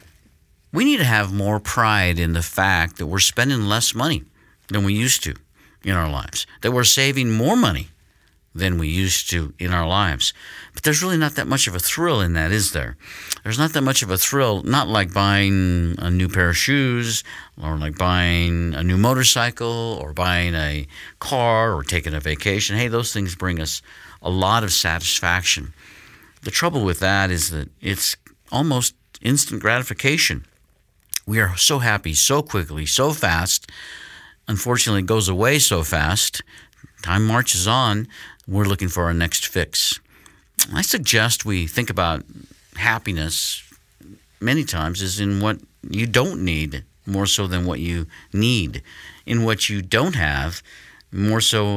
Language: English